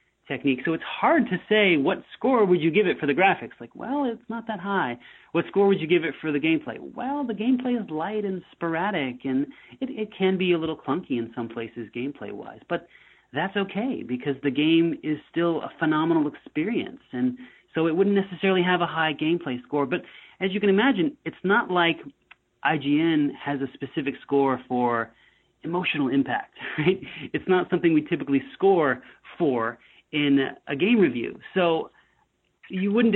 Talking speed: 185 wpm